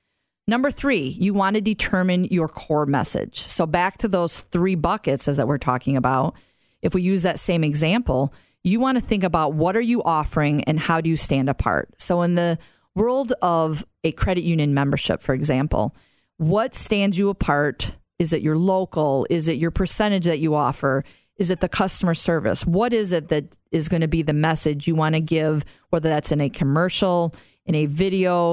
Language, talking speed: English, 195 wpm